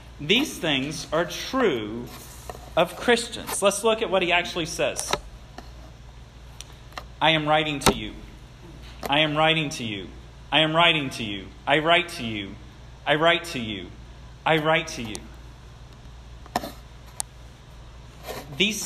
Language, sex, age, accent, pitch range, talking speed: English, male, 40-59, American, 105-155 Hz, 130 wpm